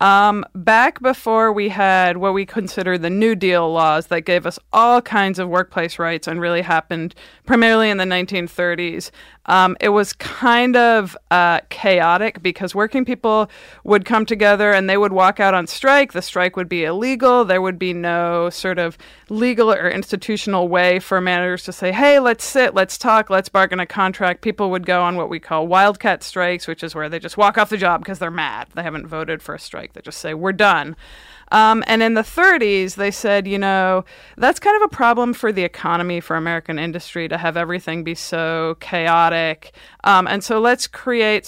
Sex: female